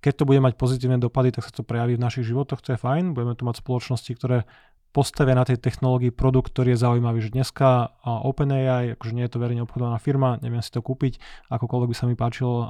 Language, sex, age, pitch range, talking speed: Slovak, male, 20-39, 120-130 Hz, 225 wpm